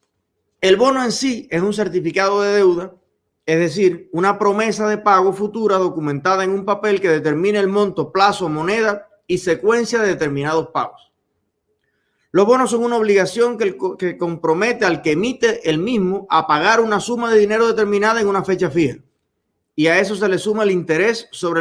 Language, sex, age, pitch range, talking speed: Spanish, male, 30-49, 170-215 Hz, 180 wpm